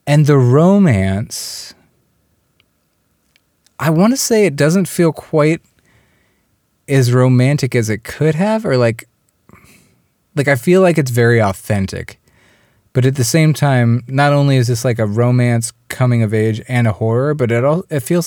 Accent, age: American, 30-49